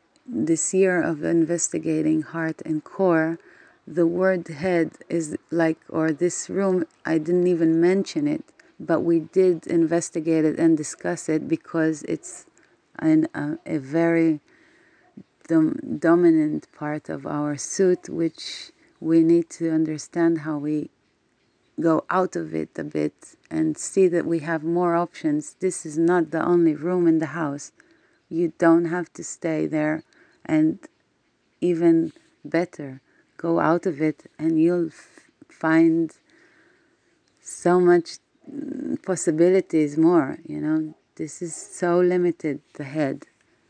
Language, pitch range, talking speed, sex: Hebrew, 160-185 Hz, 135 wpm, female